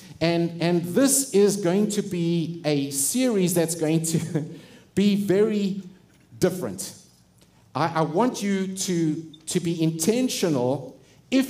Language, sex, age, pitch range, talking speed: English, male, 50-69, 150-190 Hz, 125 wpm